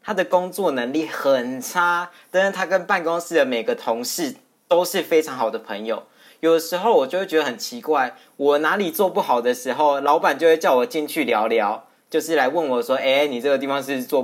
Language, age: Chinese, 20-39